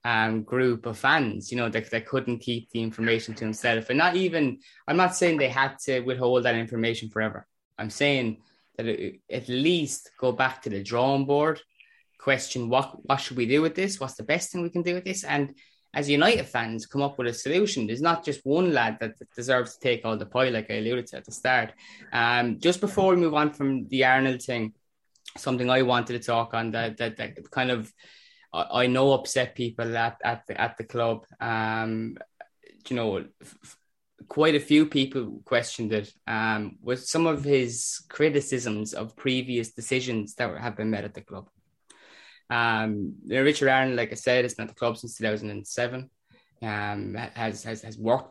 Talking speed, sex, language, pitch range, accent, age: 200 wpm, male, English, 110-135 Hz, Irish, 20-39